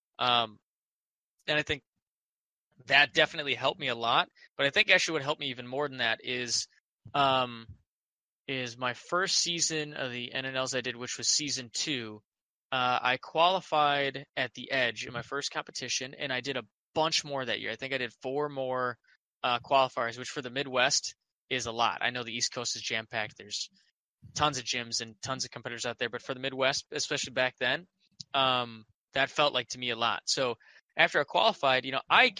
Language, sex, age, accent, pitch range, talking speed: English, male, 20-39, American, 125-145 Hz, 200 wpm